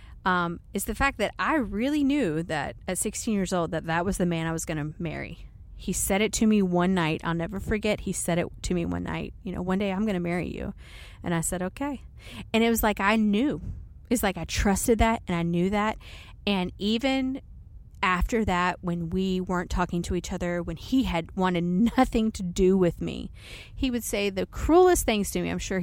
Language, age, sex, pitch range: English, 30-49, female, 170-215 Hz